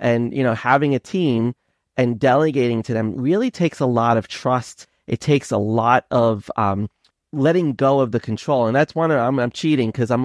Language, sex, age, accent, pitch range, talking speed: English, male, 30-49, American, 115-145 Hz, 205 wpm